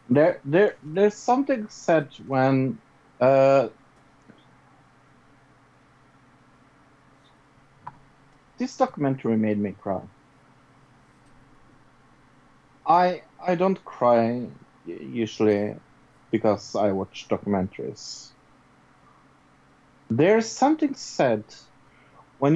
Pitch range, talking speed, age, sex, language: 120-145 Hz, 65 wpm, 50-69, male, English